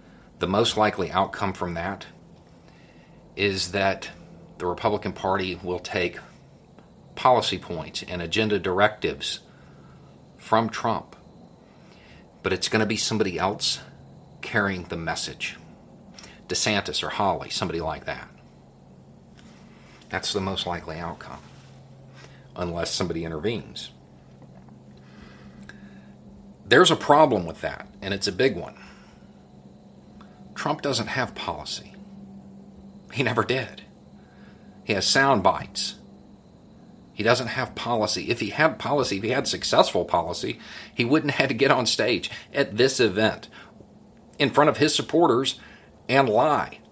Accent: American